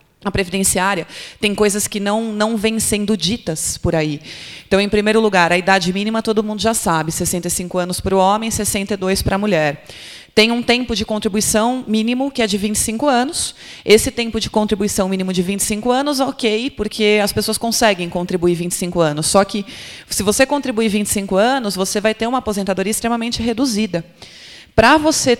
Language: Portuguese